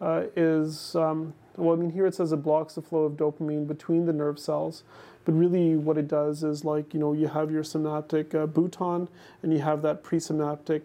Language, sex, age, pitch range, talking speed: English, male, 30-49, 155-165 Hz, 215 wpm